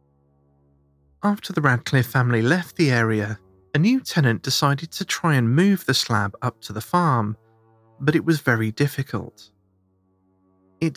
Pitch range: 95-140 Hz